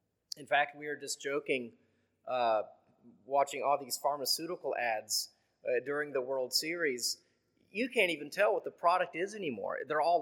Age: 30-49